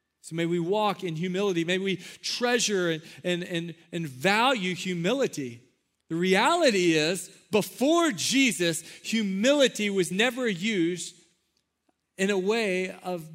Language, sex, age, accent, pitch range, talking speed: English, male, 40-59, American, 170-225 Hz, 125 wpm